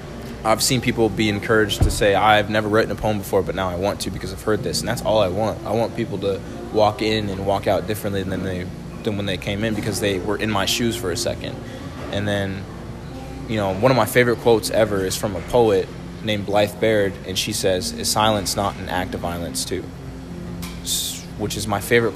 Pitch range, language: 90-110 Hz, English